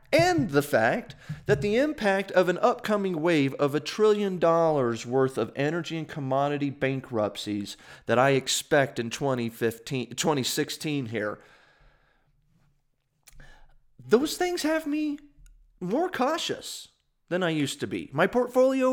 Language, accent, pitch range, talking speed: English, American, 115-175 Hz, 125 wpm